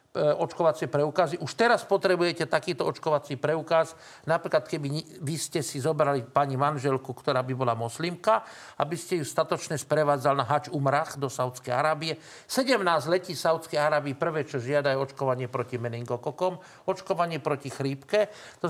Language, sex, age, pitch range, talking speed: Slovak, male, 50-69, 150-185 Hz, 145 wpm